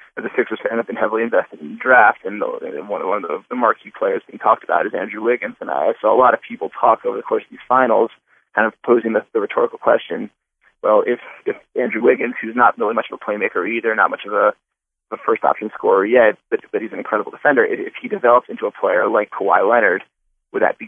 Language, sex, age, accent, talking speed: English, male, 20-39, American, 240 wpm